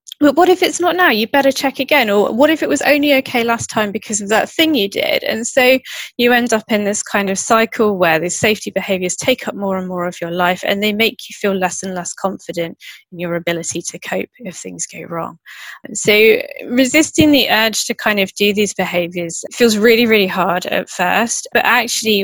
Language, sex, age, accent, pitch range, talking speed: English, female, 20-39, British, 190-240 Hz, 225 wpm